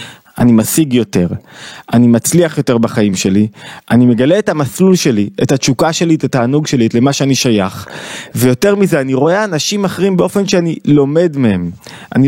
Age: 20-39